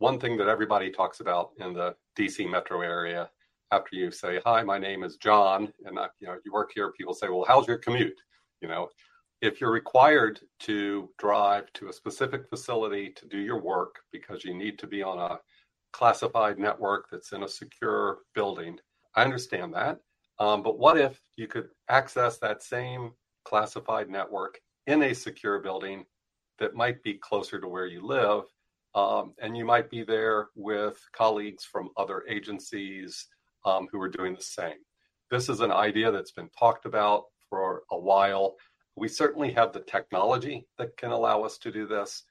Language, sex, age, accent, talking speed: English, male, 50-69, American, 180 wpm